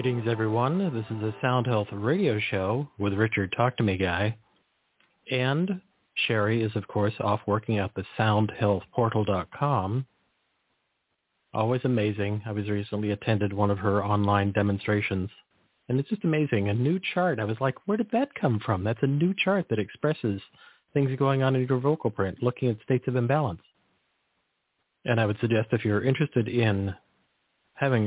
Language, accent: English, American